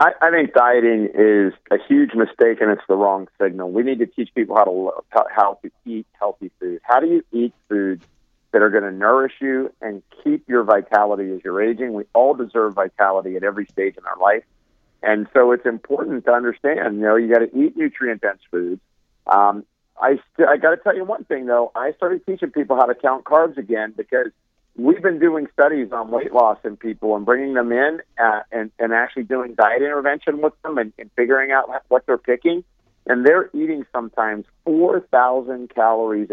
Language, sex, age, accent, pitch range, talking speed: English, male, 50-69, American, 110-170 Hz, 205 wpm